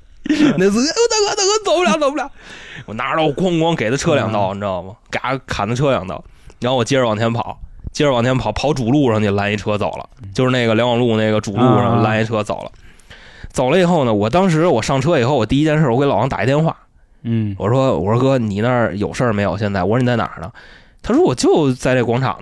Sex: male